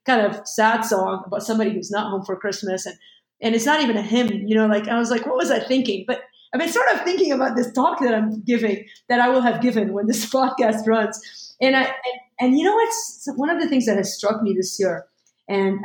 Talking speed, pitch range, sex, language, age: 260 wpm, 190-230 Hz, female, English, 30-49